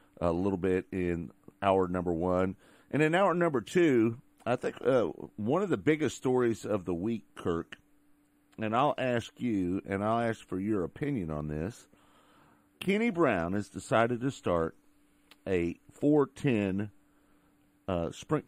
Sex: male